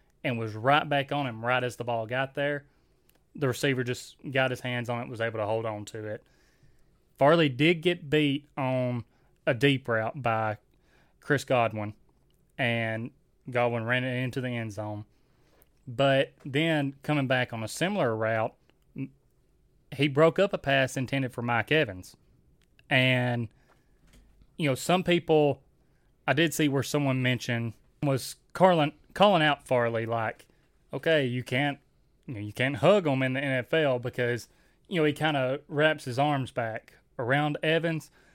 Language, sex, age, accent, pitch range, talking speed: English, male, 20-39, American, 120-150 Hz, 165 wpm